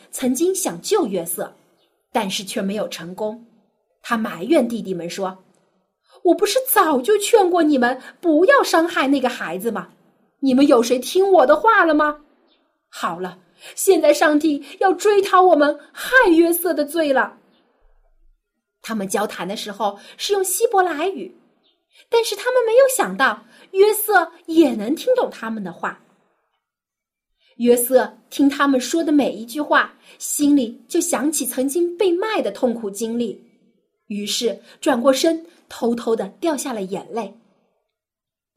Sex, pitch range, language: female, 220-340 Hz, Chinese